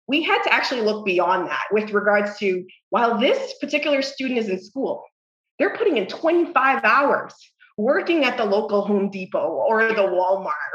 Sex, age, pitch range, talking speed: female, 20-39, 190-255 Hz, 175 wpm